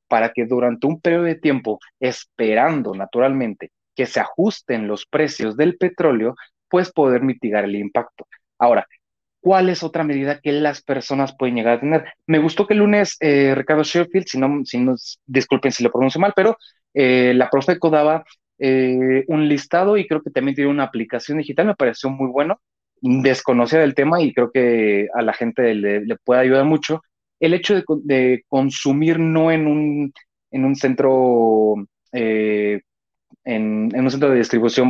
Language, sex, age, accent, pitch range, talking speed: Spanish, male, 30-49, Mexican, 120-150 Hz, 175 wpm